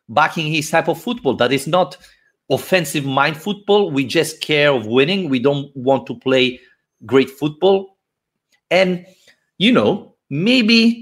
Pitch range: 140-190 Hz